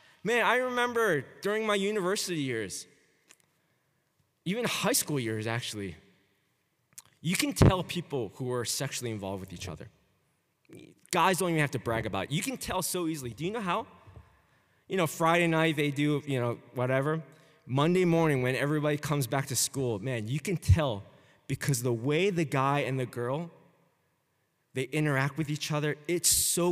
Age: 20-39